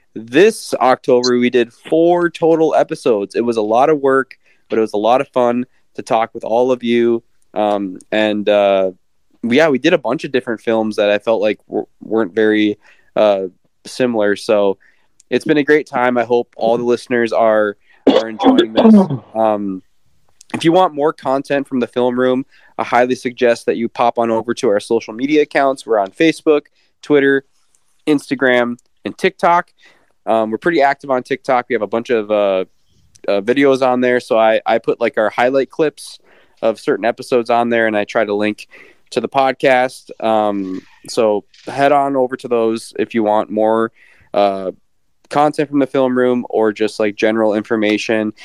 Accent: American